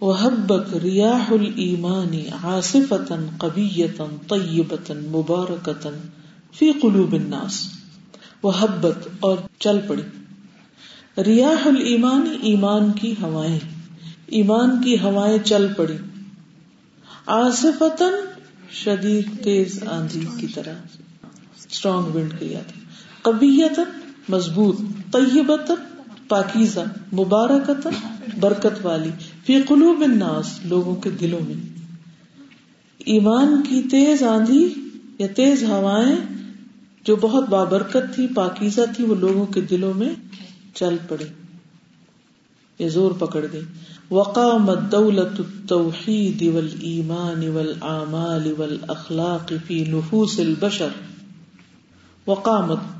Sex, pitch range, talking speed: female, 170-230 Hz, 85 wpm